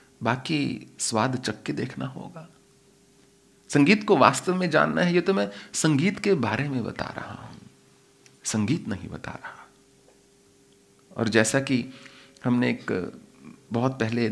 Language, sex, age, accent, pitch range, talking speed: English, male, 40-59, Indian, 100-145 Hz, 135 wpm